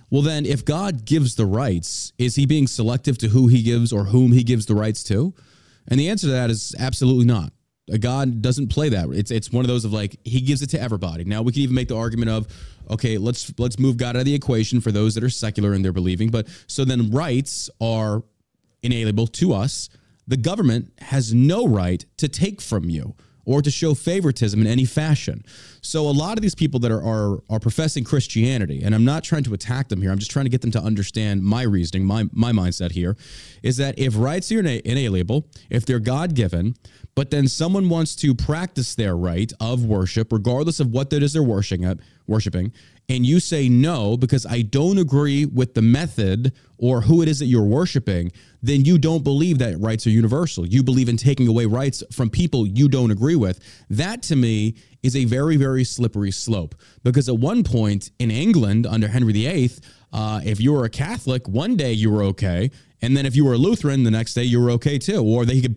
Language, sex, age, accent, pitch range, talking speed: English, male, 30-49, American, 110-140 Hz, 220 wpm